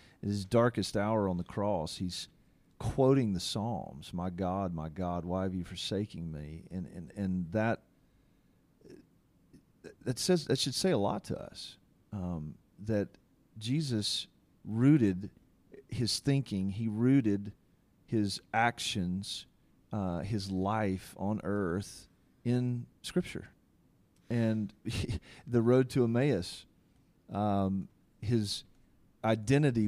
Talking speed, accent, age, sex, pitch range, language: 115 wpm, American, 40-59, male, 95-115 Hz, English